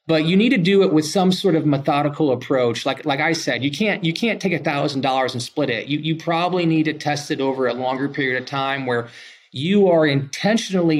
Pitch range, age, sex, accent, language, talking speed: 140-170 Hz, 30-49, male, American, English, 225 wpm